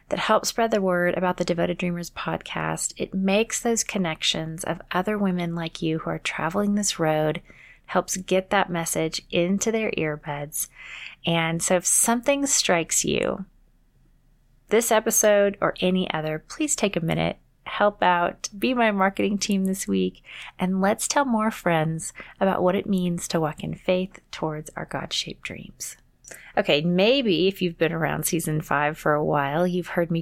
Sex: female